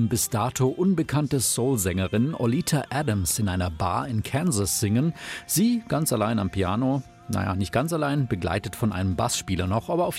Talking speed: 170 wpm